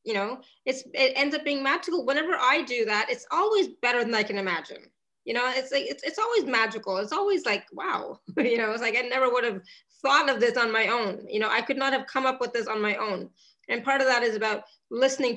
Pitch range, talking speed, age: 215-260 Hz, 255 wpm, 20-39